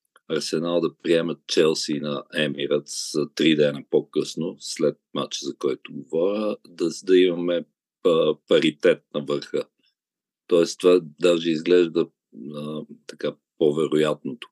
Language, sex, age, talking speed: Bulgarian, male, 50-69, 110 wpm